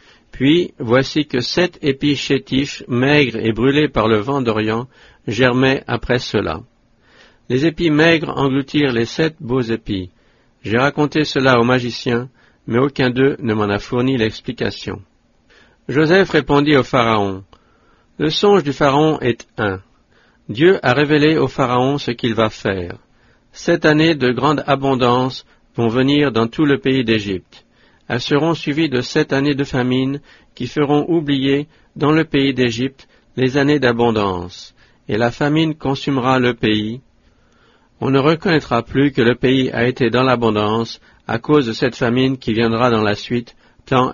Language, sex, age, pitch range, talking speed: English, male, 50-69, 115-145 Hz, 155 wpm